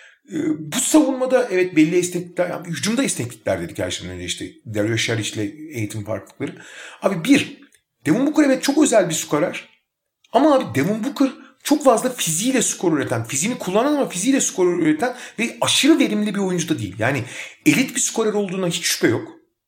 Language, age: Turkish, 40-59